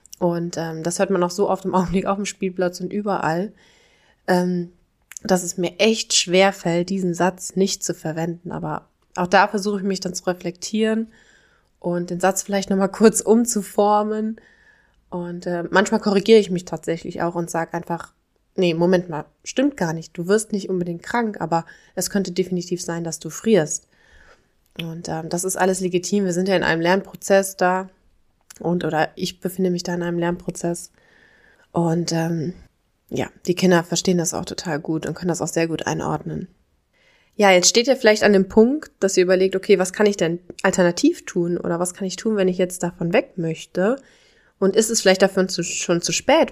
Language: German